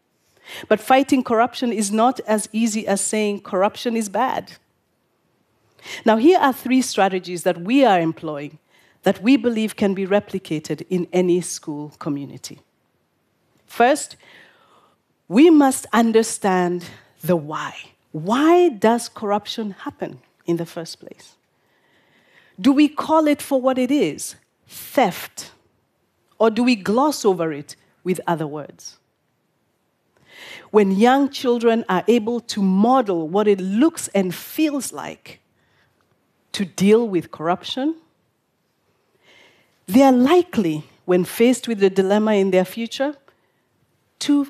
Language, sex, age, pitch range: Korean, female, 40-59, 185-255 Hz